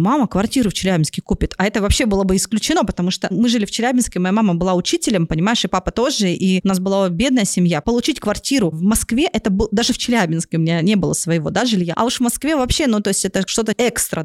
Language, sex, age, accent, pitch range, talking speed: Russian, female, 20-39, native, 185-245 Hz, 245 wpm